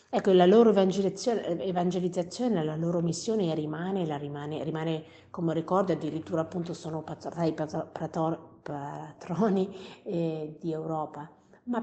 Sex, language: female, Italian